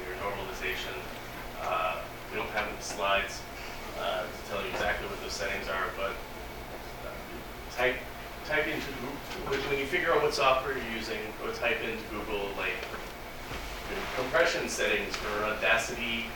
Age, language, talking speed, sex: 30-49, English, 145 wpm, male